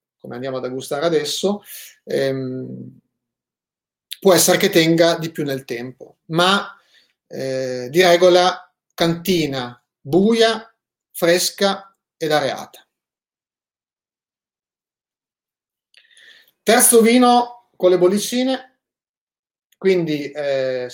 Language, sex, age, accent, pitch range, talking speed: Italian, male, 30-49, native, 155-200 Hz, 85 wpm